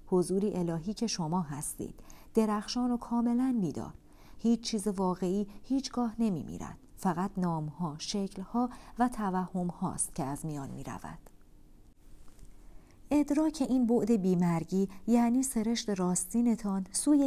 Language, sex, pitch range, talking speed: Persian, female, 175-220 Hz, 125 wpm